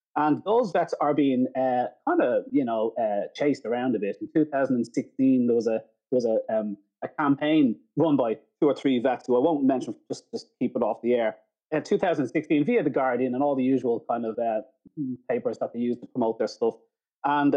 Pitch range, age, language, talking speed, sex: 120-165 Hz, 30-49, English, 210 wpm, male